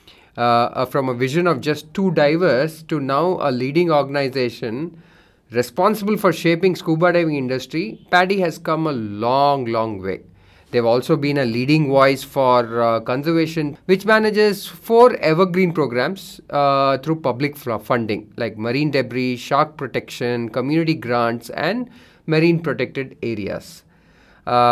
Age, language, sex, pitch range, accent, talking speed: 30-49, English, male, 125-170 Hz, Indian, 135 wpm